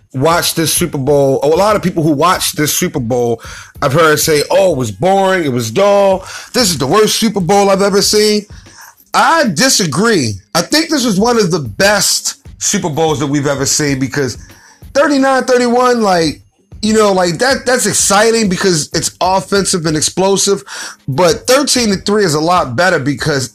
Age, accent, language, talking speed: 30-49, American, English, 185 wpm